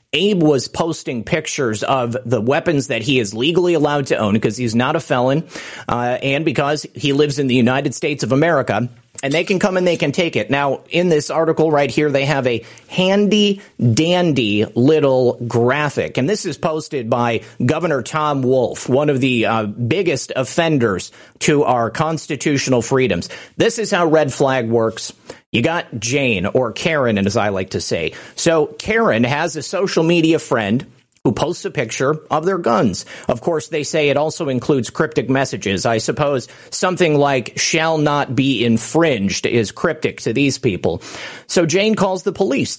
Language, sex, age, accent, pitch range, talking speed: English, male, 40-59, American, 125-165 Hz, 180 wpm